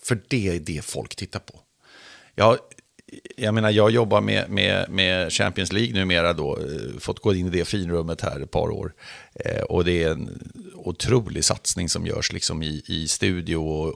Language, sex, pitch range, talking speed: Swedish, male, 85-110 Hz, 185 wpm